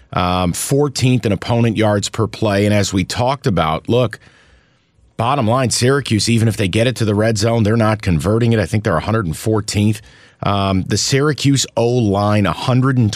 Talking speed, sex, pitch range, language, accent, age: 170 wpm, male, 100-120 Hz, English, American, 30-49